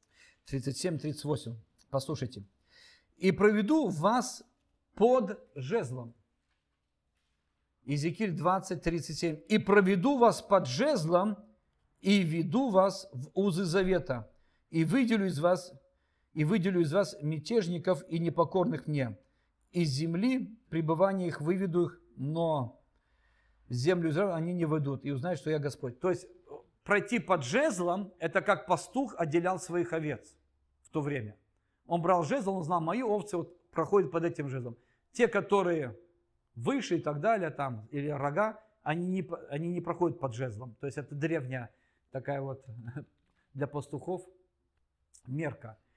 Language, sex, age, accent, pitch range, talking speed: Russian, male, 50-69, native, 140-190 Hz, 130 wpm